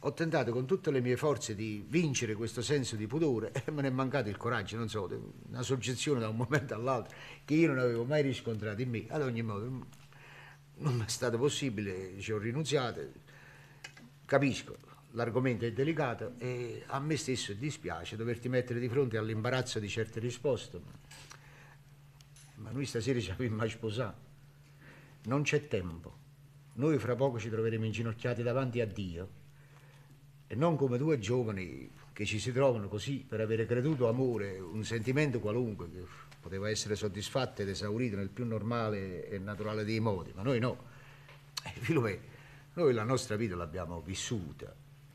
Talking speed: 160 wpm